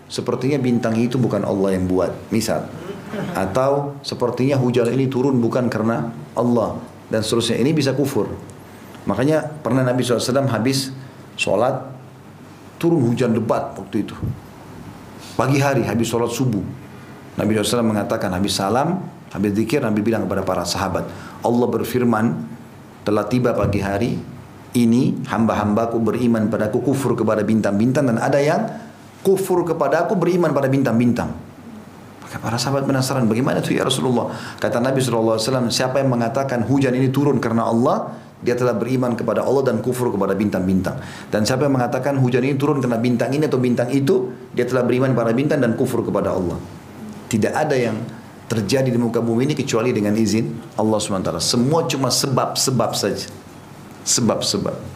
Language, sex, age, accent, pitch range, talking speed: Indonesian, male, 40-59, native, 110-135 Hz, 150 wpm